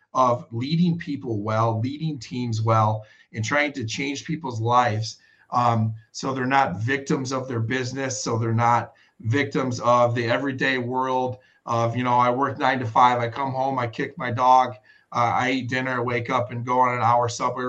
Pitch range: 120-140 Hz